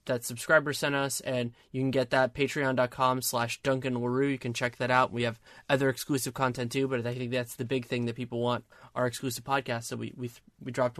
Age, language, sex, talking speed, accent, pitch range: 20-39, English, male, 230 wpm, American, 125-150 Hz